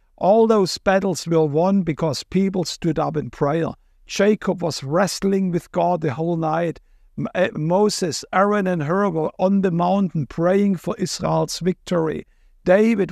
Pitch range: 155-185 Hz